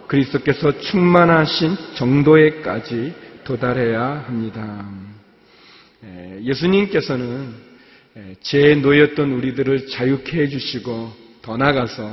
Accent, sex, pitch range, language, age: native, male, 120-155 Hz, Korean, 40-59